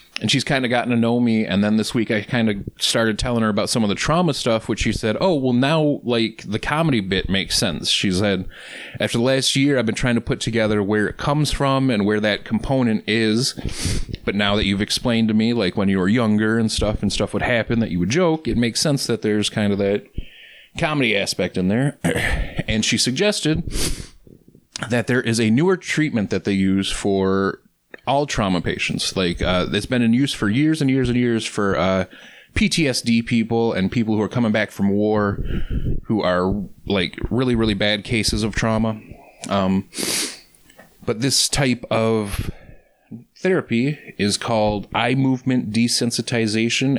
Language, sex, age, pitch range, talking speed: English, male, 30-49, 105-125 Hz, 195 wpm